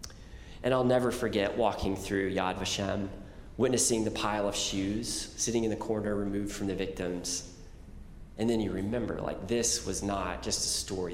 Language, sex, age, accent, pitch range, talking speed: English, male, 30-49, American, 90-115 Hz, 170 wpm